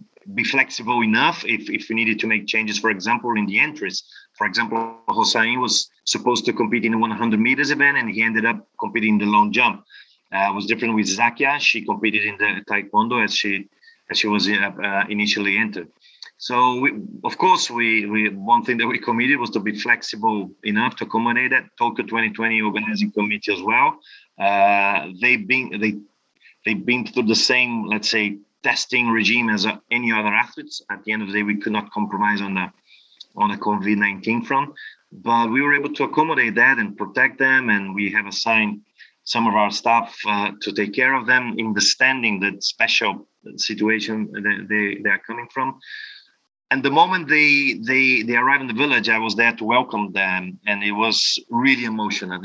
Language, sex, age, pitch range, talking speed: English, male, 30-49, 105-120 Hz, 195 wpm